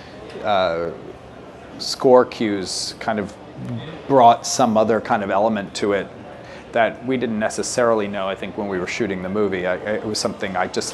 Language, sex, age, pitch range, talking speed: English, male, 40-59, 100-120 Hz, 175 wpm